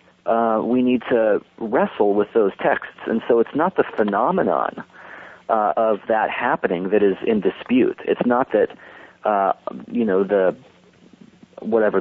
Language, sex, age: English, male, 40-59